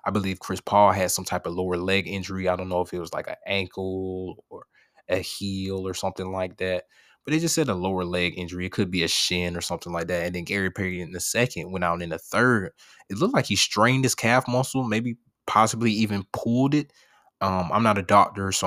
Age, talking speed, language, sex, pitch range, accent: 20-39, 240 wpm, English, male, 90-105 Hz, American